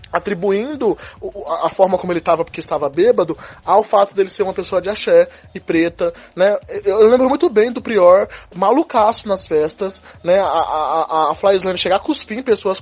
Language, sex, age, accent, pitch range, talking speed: Portuguese, male, 20-39, Brazilian, 170-235 Hz, 180 wpm